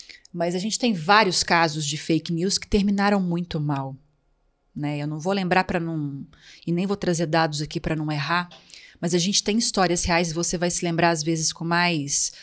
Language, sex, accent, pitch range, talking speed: Portuguese, female, Brazilian, 170-205 Hz, 215 wpm